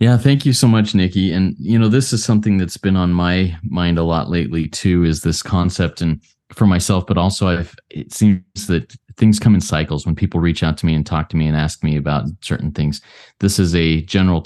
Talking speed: 235 wpm